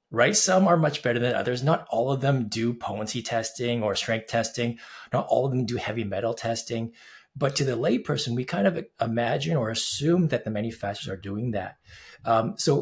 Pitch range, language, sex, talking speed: 115-150 Hz, English, male, 200 wpm